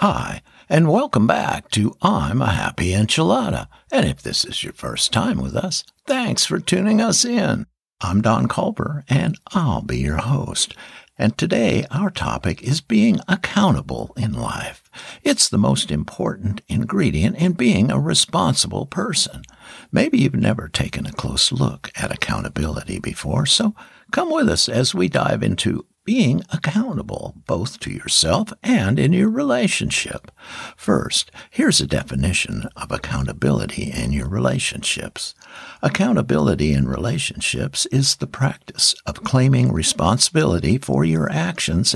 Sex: male